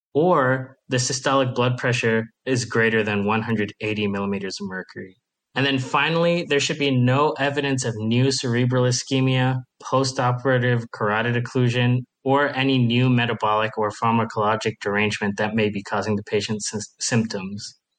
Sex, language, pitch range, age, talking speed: male, English, 110-135 Hz, 20-39, 135 wpm